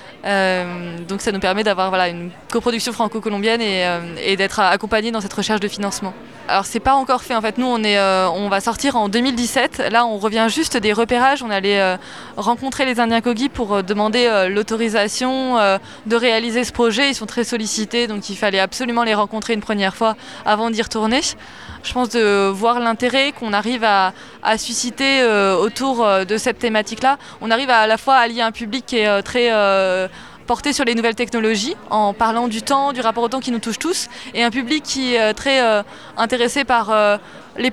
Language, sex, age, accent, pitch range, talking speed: French, female, 20-39, French, 210-250 Hz, 210 wpm